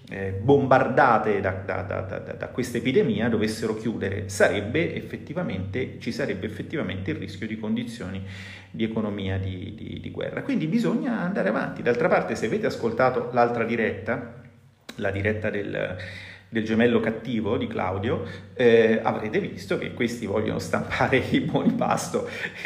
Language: Italian